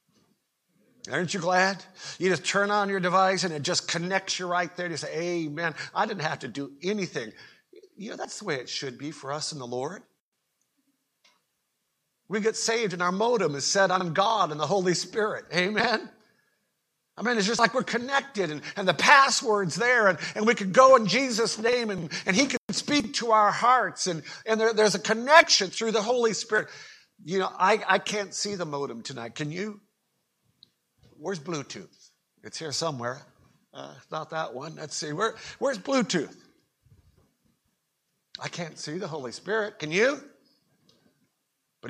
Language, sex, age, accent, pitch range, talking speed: English, male, 50-69, American, 160-220 Hz, 180 wpm